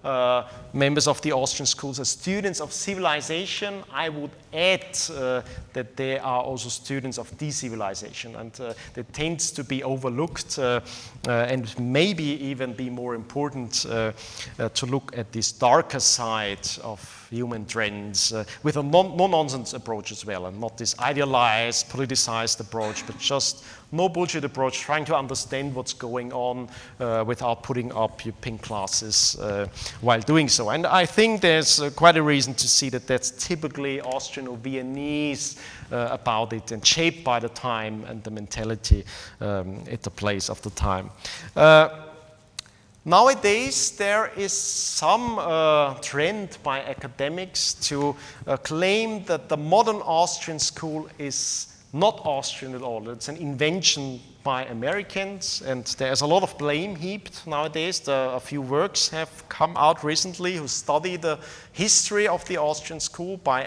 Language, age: English, 40-59